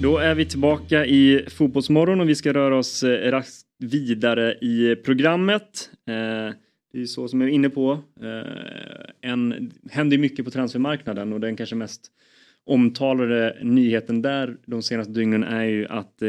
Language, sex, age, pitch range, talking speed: Swedish, male, 20-39, 110-140 Hz, 145 wpm